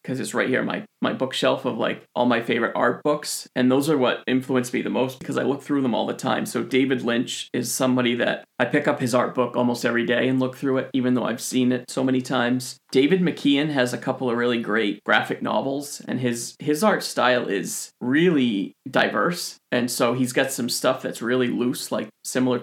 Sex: male